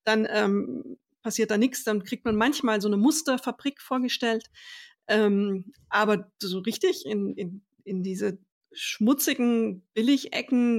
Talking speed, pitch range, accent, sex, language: 130 wpm, 195-225 Hz, German, female, German